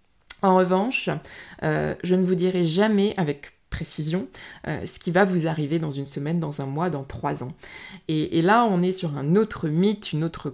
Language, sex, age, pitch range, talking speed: French, female, 20-39, 150-185 Hz, 205 wpm